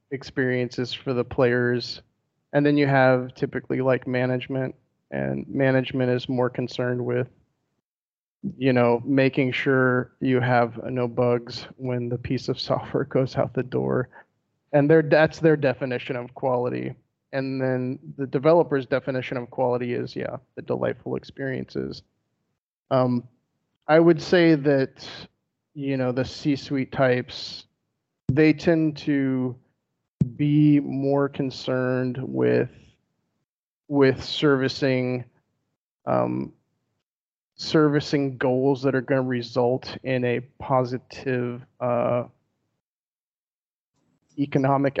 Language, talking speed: English, 110 wpm